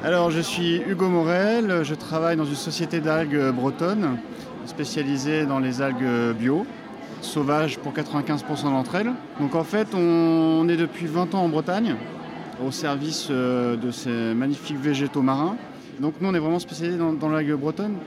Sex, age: male, 30-49